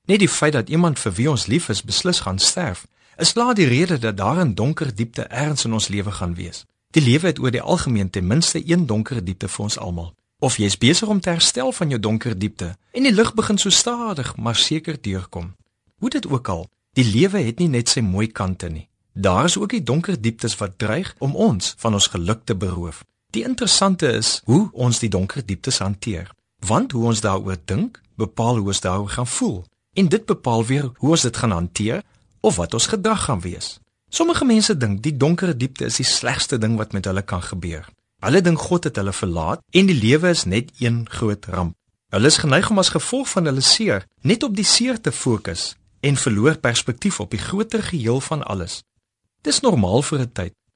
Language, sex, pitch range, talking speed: Dutch, male, 100-165 Hz, 220 wpm